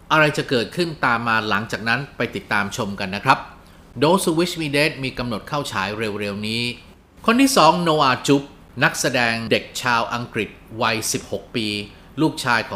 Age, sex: 30-49, male